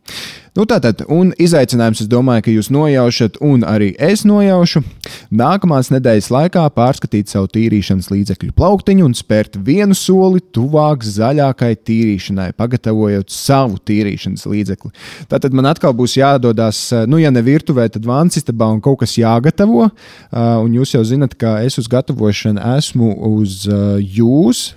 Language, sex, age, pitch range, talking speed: English, male, 20-39, 110-140 Hz, 135 wpm